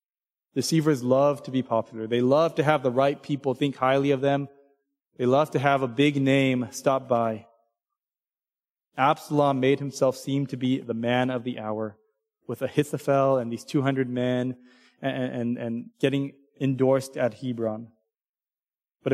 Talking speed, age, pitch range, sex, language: 155 wpm, 20-39, 120-150 Hz, male, English